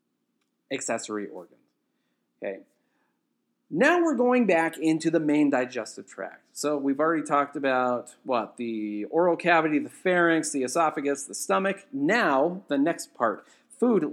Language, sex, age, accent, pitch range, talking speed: English, male, 40-59, American, 115-175 Hz, 135 wpm